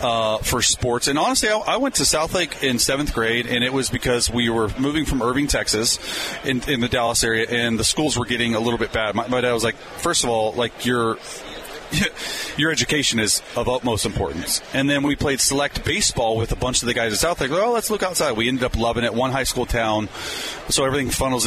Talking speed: 235 wpm